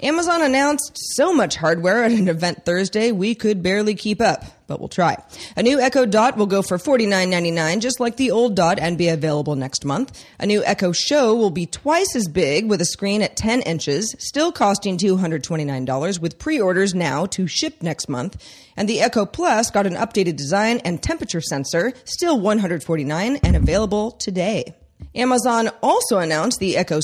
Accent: American